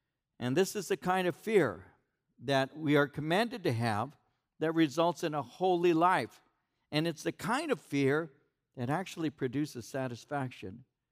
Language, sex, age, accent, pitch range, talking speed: English, male, 60-79, American, 125-165 Hz, 155 wpm